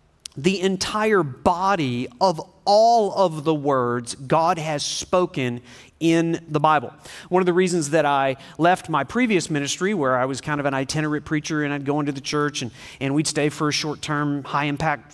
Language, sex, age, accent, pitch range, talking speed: English, male, 40-59, American, 145-185 Hz, 180 wpm